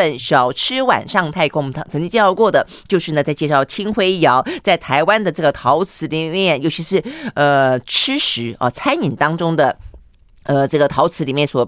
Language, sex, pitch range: Chinese, female, 145-200 Hz